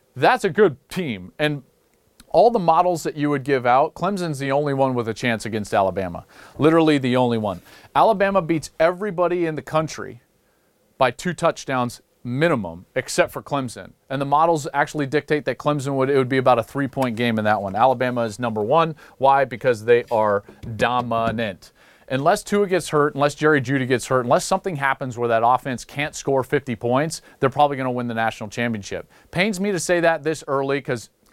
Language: English